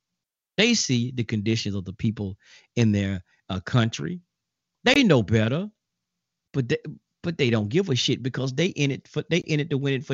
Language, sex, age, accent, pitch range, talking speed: English, male, 40-59, American, 110-175 Hz, 200 wpm